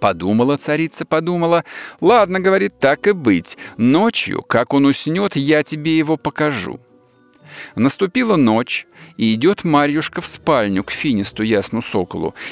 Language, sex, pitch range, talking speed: Russian, male, 105-150 Hz, 140 wpm